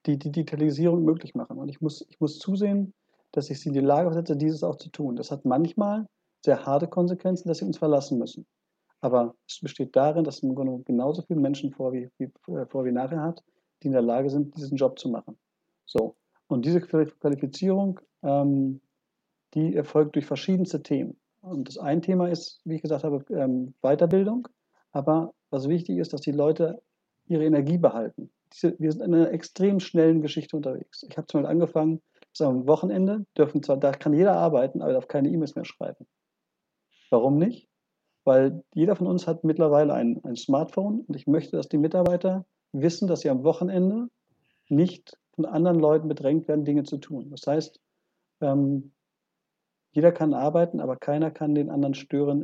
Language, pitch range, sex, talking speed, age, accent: German, 140-170 Hz, male, 180 wpm, 50-69, German